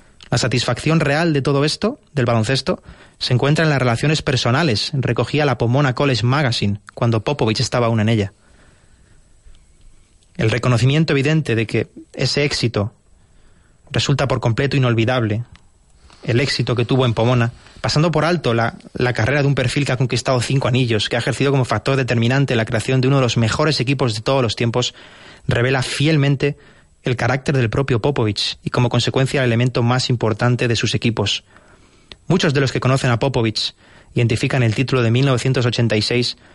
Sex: male